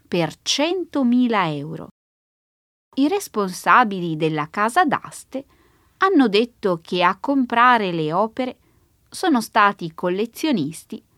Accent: native